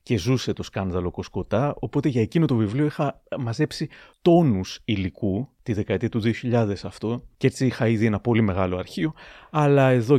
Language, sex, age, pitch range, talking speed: Greek, male, 30-49, 105-145 Hz, 170 wpm